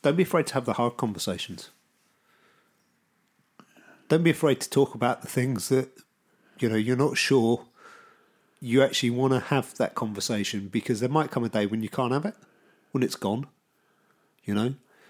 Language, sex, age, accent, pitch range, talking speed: English, male, 40-59, British, 110-140 Hz, 180 wpm